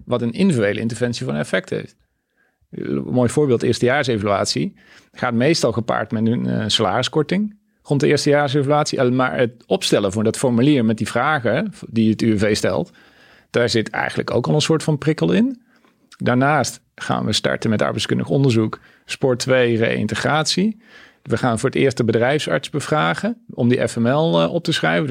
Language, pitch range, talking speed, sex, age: Dutch, 110-135 Hz, 160 wpm, male, 40-59